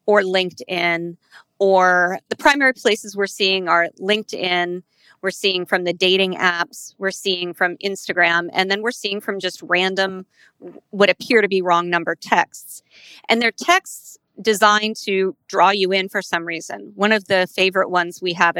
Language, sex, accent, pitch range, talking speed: English, female, American, 180-210 Hz, 170 wpm